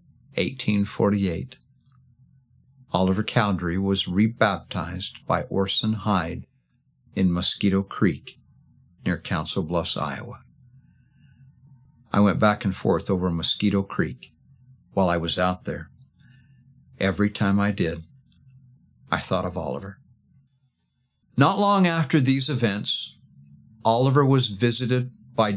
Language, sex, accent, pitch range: English, male, American, 100-130 Hz